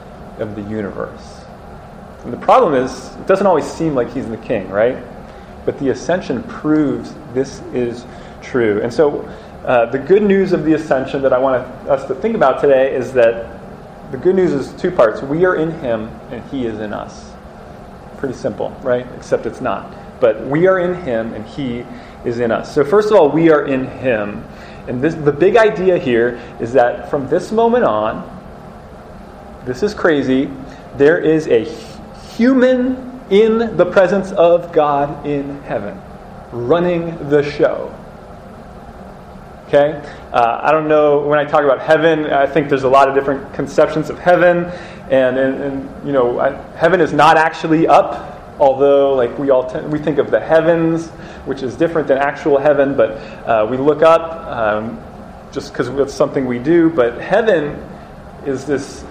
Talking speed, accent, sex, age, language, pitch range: 175 wpm, American, male, 30-49, English, 130-170 Hz